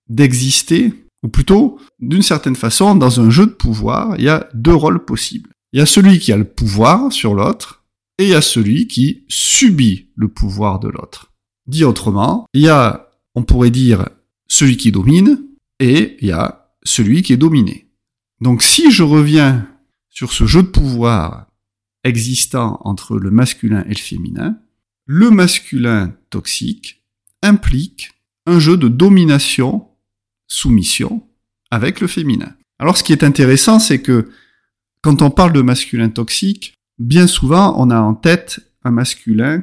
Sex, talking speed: male, 160 wpm